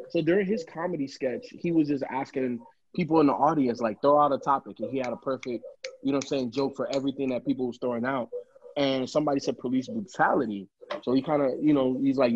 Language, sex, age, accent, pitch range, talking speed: English, male, 20-39, American, 125-165 Hz, 240 wpm